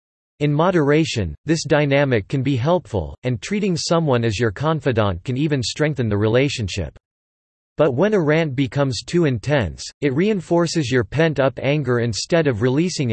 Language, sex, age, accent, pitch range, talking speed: English, male, 40-59, American, 115-155 Hz, 150 wpm